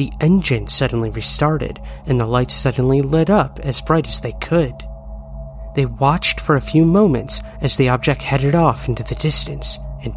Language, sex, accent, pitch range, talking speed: English, male, American, 110-145 Hz, 175 wpm